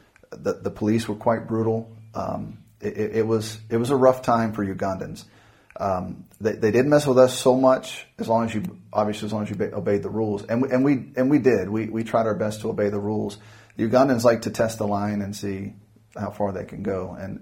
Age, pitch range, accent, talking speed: 40-59, 100-115 Hz, American, 240 wpm